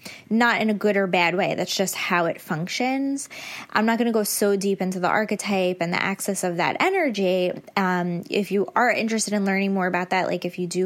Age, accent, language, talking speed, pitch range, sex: 10-29, American, English, 230 wpm, 185-225 Hz, female